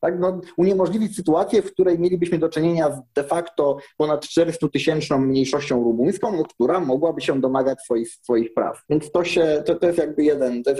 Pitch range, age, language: 140-175 Hz, 30-49, Polish